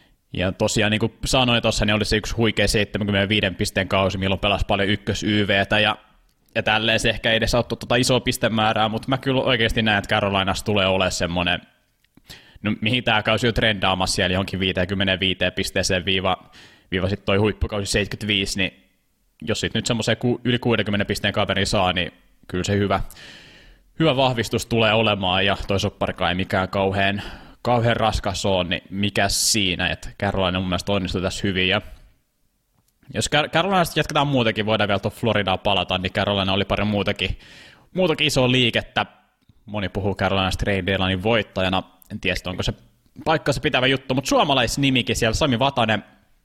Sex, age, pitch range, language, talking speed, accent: male, 20-39, 95-115 Hz, Finnish, 165 wpm, native